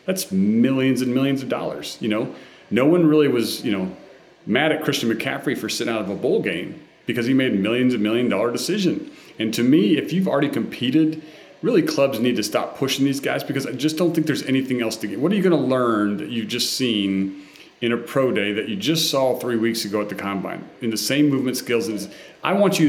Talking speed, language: 240 wpm, English